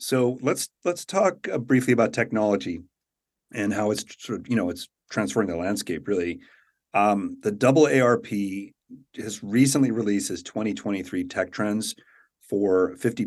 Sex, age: male, 40-59